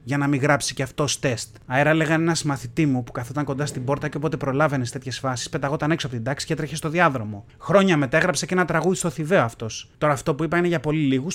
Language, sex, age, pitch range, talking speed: Greek, male, 30-49, 135-185 Hz, 250 wpm